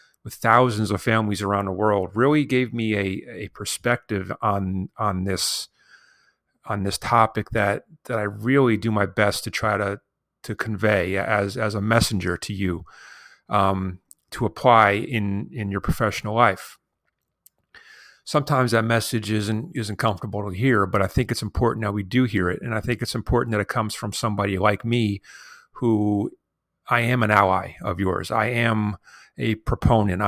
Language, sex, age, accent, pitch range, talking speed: English, male, 40-59, American, 100-115 Hz, 170 wpm